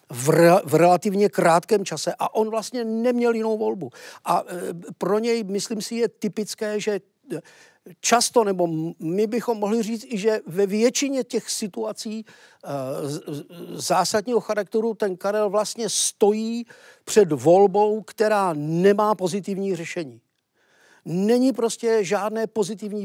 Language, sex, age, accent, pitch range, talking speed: Czech, male, 50-69, native, 170-215 Hz, 115 wpm